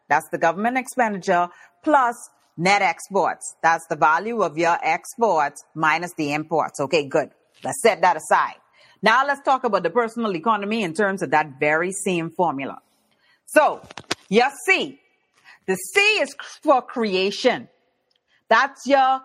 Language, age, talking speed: English, 40-59, 145 wpm